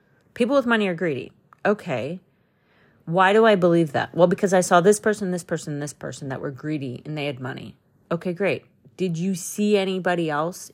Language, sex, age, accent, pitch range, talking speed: English, female, 30-49, American, 150-195 Hz, 200 wpm